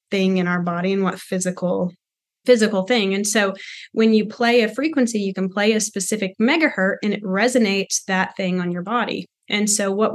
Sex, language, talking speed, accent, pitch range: female, English, 195 wpm, American, 185-225 Hz